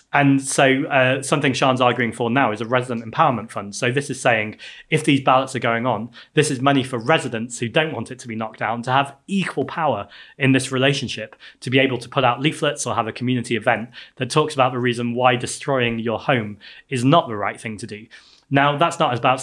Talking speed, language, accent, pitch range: 230 wpm, English, British, 110-130 Hz